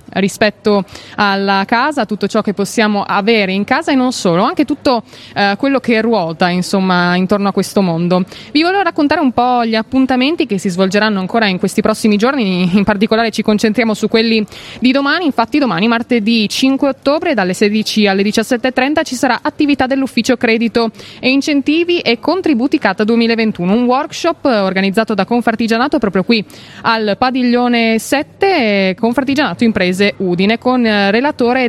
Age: 20-39